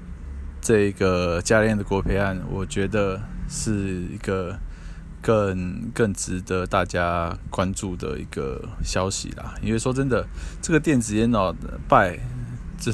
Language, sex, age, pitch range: Chinese, male, 20-39, 90-115 Hz